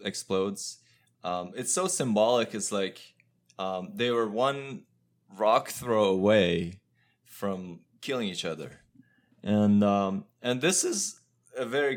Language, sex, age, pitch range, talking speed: English, male, 20-39, 90-115 Hz, 125 wpm